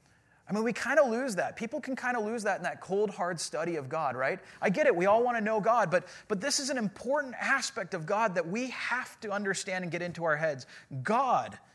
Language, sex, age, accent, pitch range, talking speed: English, male, 30-49, American, 165-230 Hz, 255 wpm